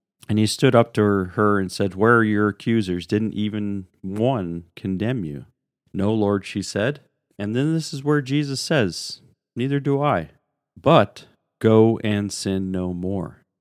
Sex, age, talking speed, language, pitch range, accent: male, 40-59, 165 wpm, English, 110-150 Hz, American